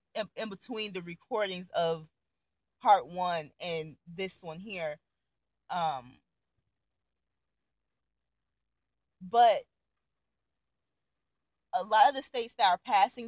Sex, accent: female, American